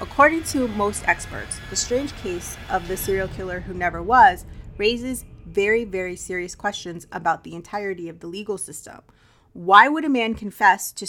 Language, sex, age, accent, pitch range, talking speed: English, female, 30-49, American, 180-230 Hz, 175 wpm